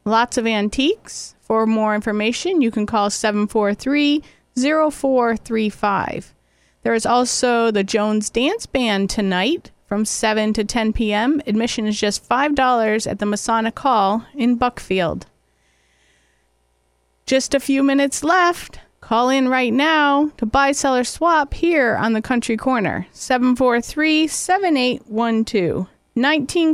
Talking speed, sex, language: 120 wpm, female, English